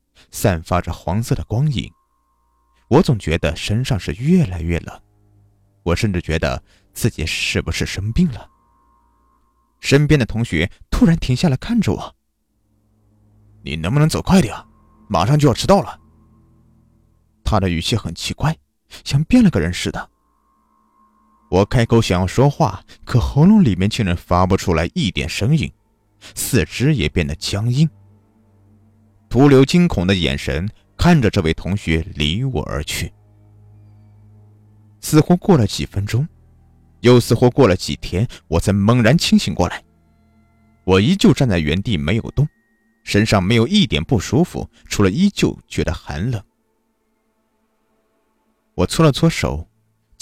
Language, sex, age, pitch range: Chinese, male, 30-49, 85-125 Hz